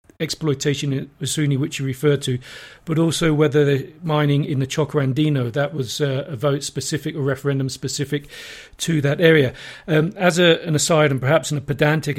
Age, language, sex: 40-59, English, male